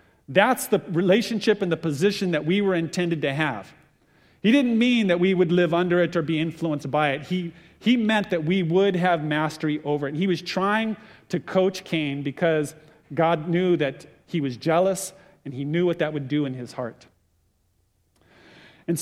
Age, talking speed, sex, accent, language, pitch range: 40-59, 195 wpm, male, American, English, 145-190 Hz